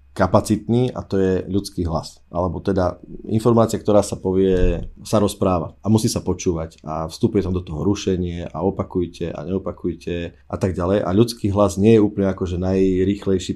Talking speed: 175 wpm